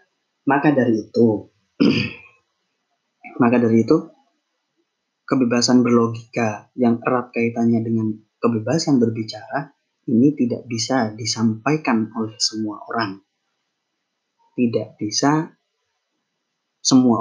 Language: Indonesian